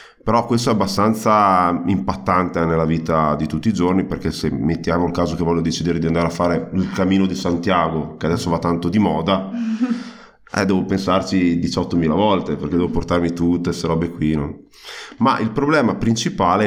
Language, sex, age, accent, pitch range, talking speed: German, male, 30-49, Italian, 85-100 Hz, 180 wpm